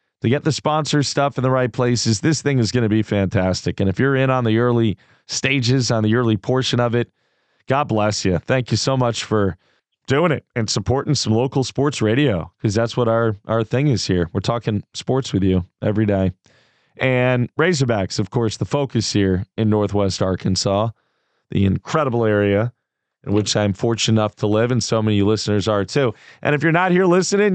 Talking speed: 205 wpm